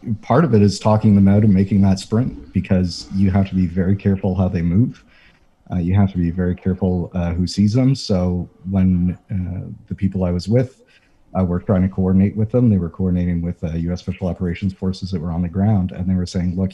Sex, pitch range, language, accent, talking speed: male, 90-100 Hz, English, American, 235 wpm